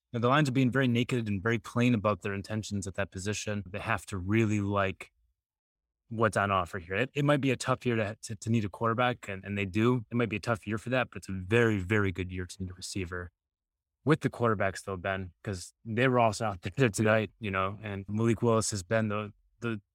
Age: 20-39